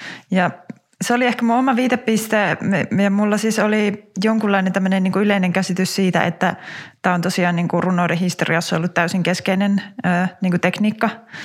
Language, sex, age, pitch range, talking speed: Finnish, female, 20-39, 175-200 Hz, 125 wpm